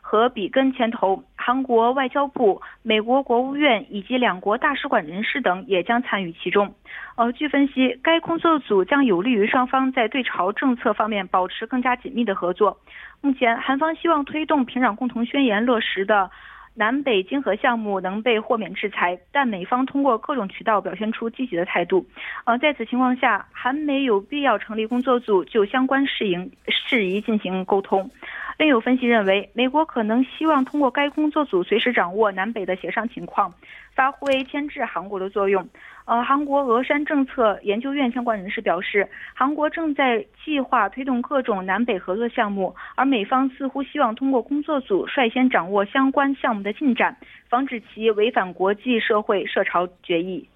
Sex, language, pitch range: female, Korean, 210-275 Hz